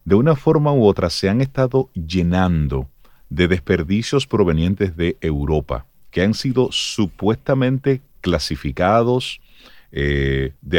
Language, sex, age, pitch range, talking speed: Spanish, male, 40-59, 85-115 Hz, 115 wpm